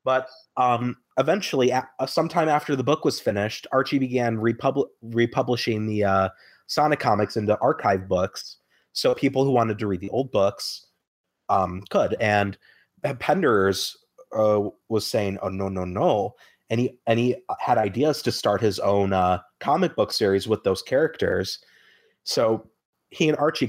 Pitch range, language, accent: 105-135 Hz, English, American